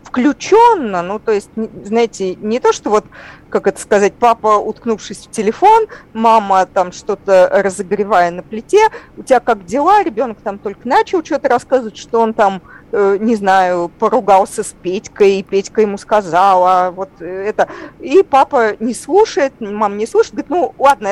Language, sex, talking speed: Russian, female, 160 wpm